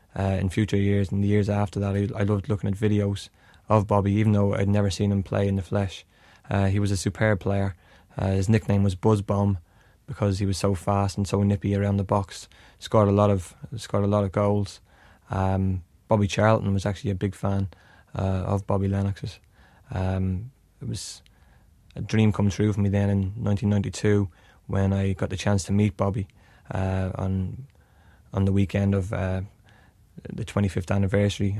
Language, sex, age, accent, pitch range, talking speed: English, male, 20-39, Irish, 95-105 Hz, 195 wpm